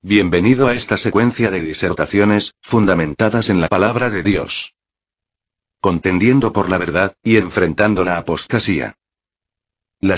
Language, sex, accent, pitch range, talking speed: Spanish, male, Spanish, 95-115 Hz, 125 wpm